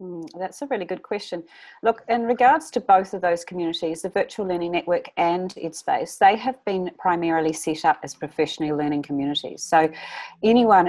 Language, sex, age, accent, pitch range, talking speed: English, female, 40-59, Australian, 155-190 Hz, 175 wpm